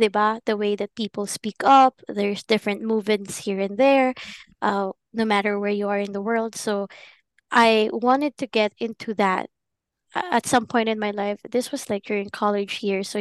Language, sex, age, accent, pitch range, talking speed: Filipino, female, 20-39, native, 205-245 Hz, 190 wpm